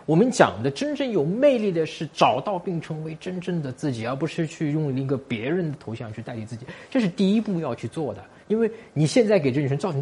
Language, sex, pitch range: Chinese, male, 150-220 Hz